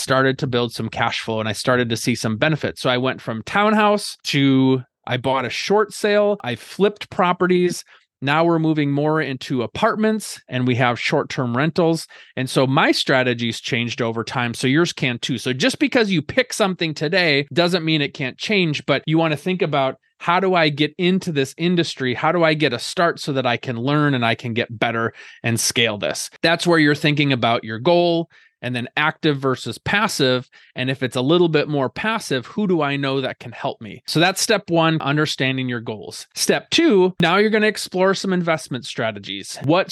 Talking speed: 210 wpm